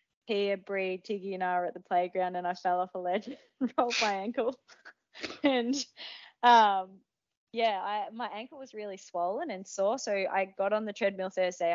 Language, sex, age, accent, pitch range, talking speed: English, female, 20-39, Australian, 170-195 Hz, 190 wpm